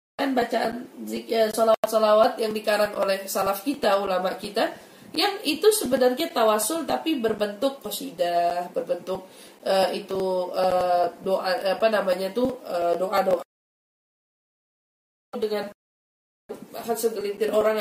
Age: 20-39